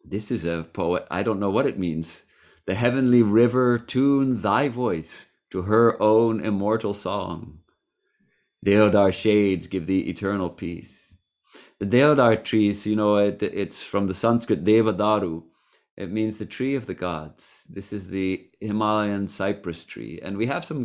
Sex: male